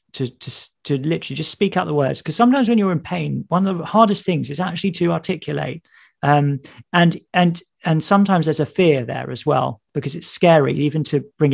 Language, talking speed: English, 215 wpm